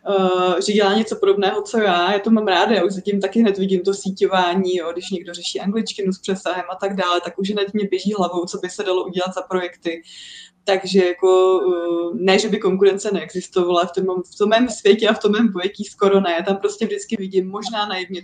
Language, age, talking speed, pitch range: Czech, 20-39, 225 wpm, 180-200 Hz